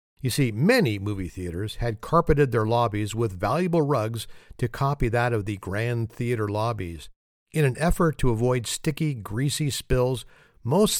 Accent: American